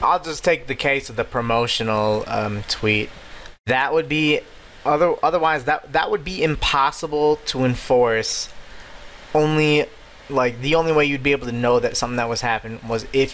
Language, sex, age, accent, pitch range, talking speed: English, male, 20-39, American, 110-140 Hz, 170 wpm